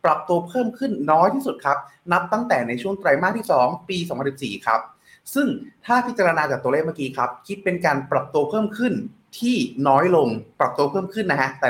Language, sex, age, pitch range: Thai, male, 20-39, 135-220 Hz